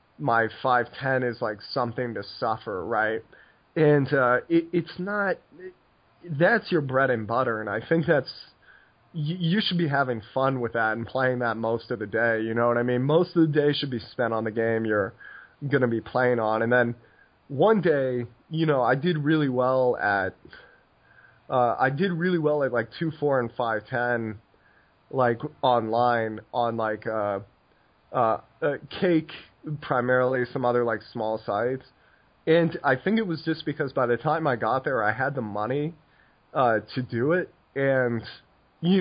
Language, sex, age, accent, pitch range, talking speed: English, male, 20-39, American, 115-150 Hz, 180 wpm